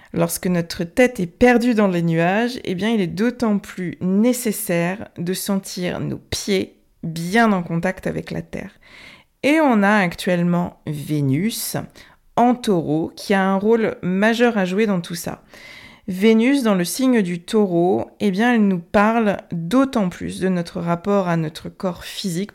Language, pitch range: French, 180-230 Hz